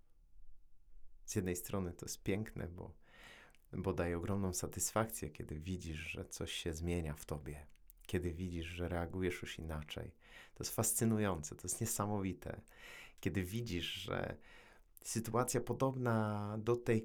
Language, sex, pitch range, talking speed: Polish, male, 80-110 Hz, 135 wpm